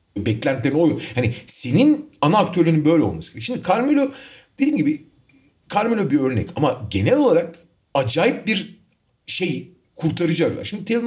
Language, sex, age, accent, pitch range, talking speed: Turkish, male, 40-59, native, 120-195 Hz, 140 wpm